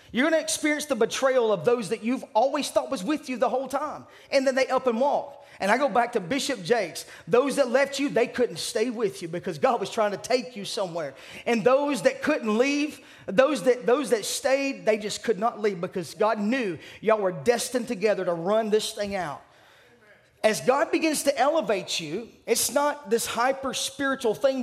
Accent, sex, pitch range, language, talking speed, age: American, male, 210-270 Hz, English, 205 wpm, 30-49